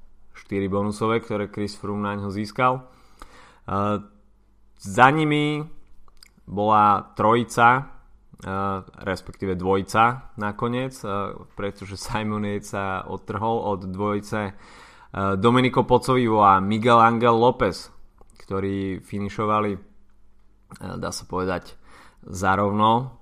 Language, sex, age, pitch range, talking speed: Slovak, male, 20-39, 100-115 Hz, 100 wpm